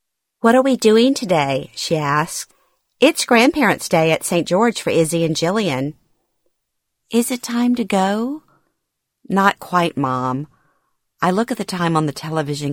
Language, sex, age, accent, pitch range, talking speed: English, female, 50-69, American, 145-190 Hz, 155 wpm